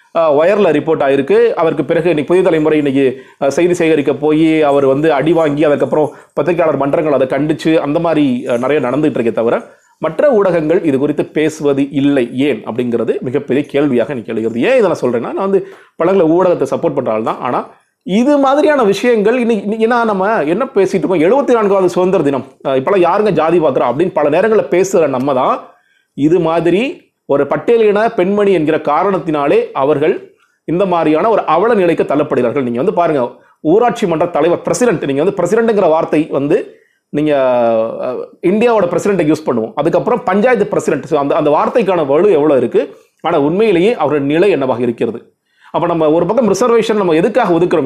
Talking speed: 145 wpm